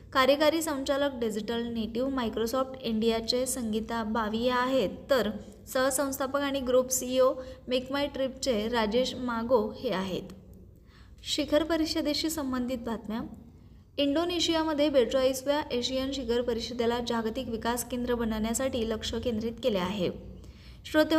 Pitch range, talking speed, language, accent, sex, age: 235-275 Hz, 110 wpm, Marathi, native, female, 20-39